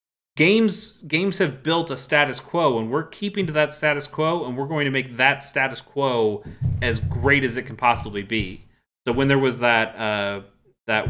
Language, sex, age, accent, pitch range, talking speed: English, male, 30-49, American, 110-140 Hz, 195 wpm